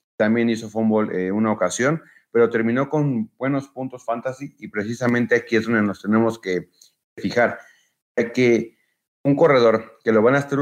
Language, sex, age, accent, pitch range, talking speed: Spanish, male, 30-49, Mexican, 100-115 Hz, 165 wpm